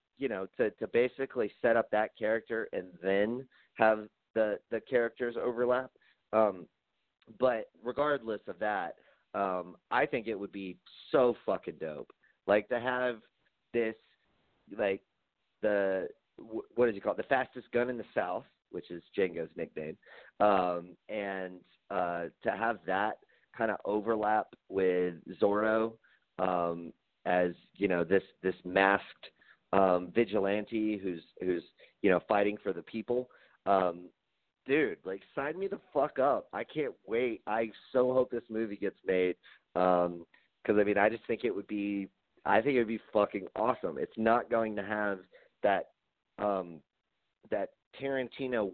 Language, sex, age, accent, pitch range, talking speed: English, male, 30-49, American, 90-115 Hz, 150 wpm